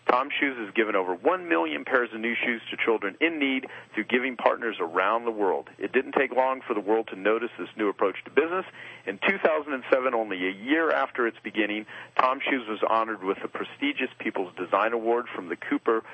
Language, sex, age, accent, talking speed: English, male, 40-59, American, 210 wpm